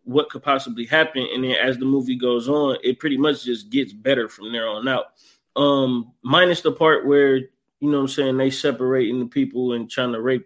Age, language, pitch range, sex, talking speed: 20-39, English, 125-145 Hz, male, 220 wpm